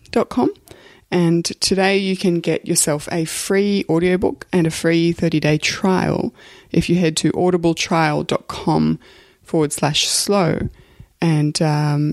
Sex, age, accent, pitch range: female, 20-39, Australian, 150-180 Hz